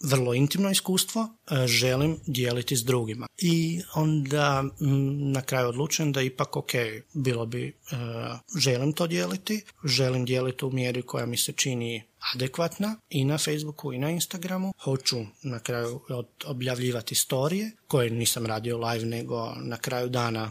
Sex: male